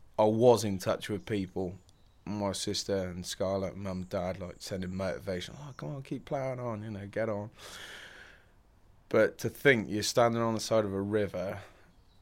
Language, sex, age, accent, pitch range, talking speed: English, male, 20-39, British, 95-110 Hz, 175 wpm